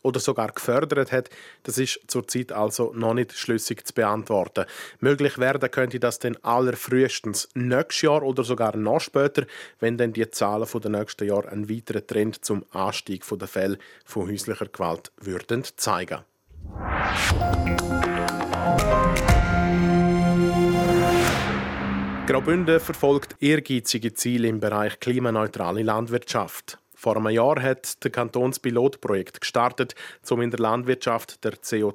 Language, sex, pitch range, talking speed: German, male, 105-135 Hz, 125 wpm